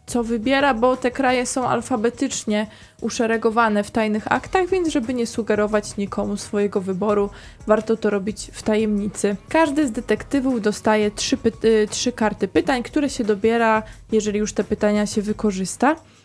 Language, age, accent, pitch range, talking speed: Polish, 20-39, native, 210-250 Hz, 145 wpm